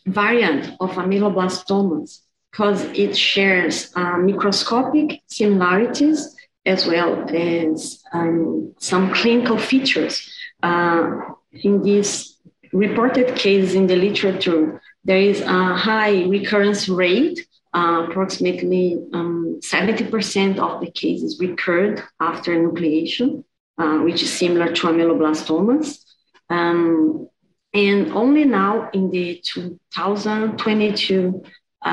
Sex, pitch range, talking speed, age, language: female, 175-205 Hz, 100 wpm, 30-49, English